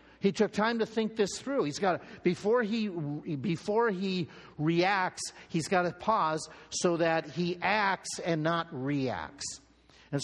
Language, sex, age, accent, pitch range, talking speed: English, male, 50-69, American, 145-205 Hz, 160 wpm